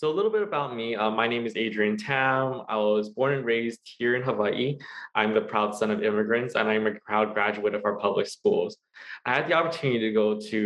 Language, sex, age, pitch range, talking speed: English, male, 20-39, 105-130 Hz, 235 wpm